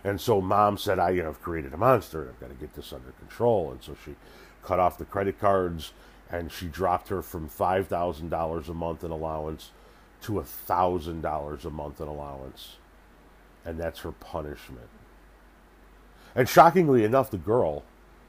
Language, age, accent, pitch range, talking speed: English, 40-59, American, 80-100 Hz, 160 wpm